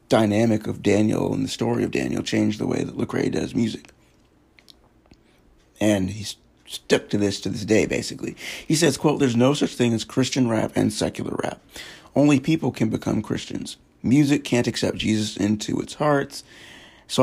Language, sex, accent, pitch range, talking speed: English, male, American, 110-135 Hz, 175 wpm